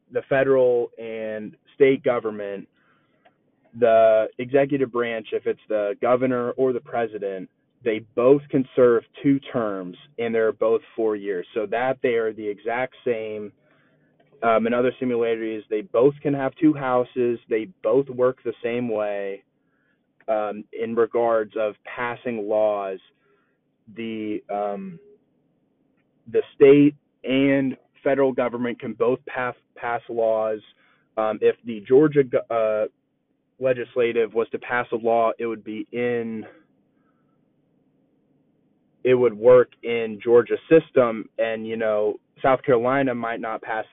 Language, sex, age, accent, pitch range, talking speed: English, male, 20-39, American, 110-135 Hz, 130 wpm